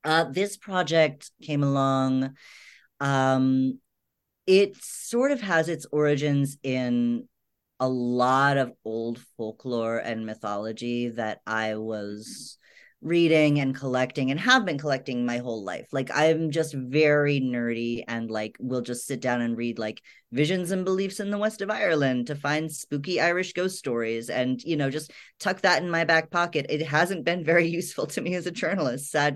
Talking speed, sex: 170 wpm, female